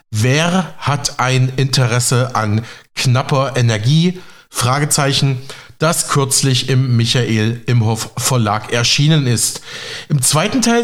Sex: male